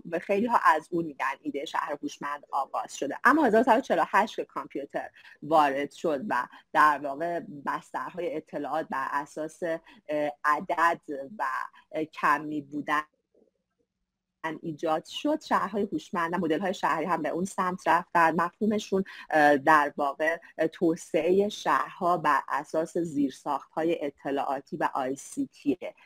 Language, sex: Persian, female